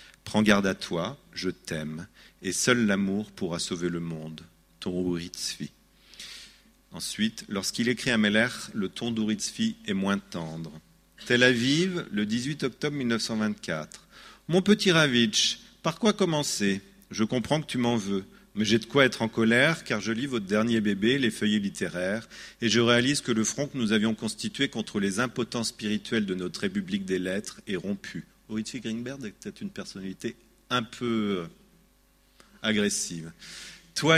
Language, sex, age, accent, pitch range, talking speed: French, male, 40-59, French, 100-125 Hz, 170 wpm